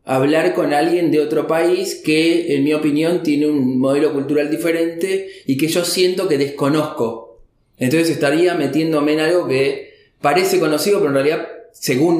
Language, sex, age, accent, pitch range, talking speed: Spanish, male, 20-39, Argentinian, 140-170 Hz, 160 wpm